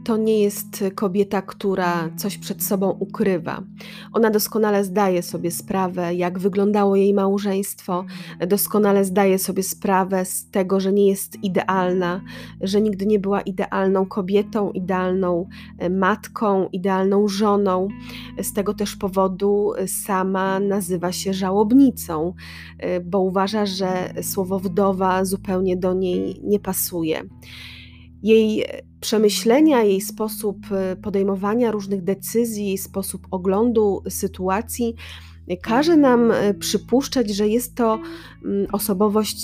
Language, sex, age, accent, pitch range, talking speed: Polish, female, 20-39, native, 185-210 Hz, 110 wpm